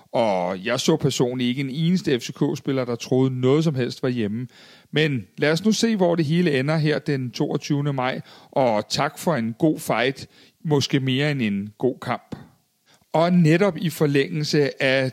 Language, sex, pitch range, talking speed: Danish, male, 130-165 Hz, 180 wpm